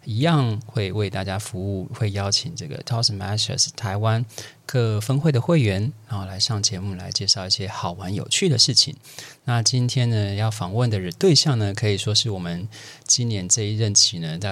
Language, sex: Chinese, male